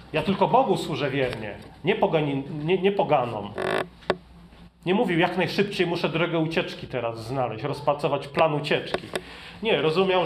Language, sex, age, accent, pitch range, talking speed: Polish, male, 30-49, native, 135-180 Hz, 140 wpm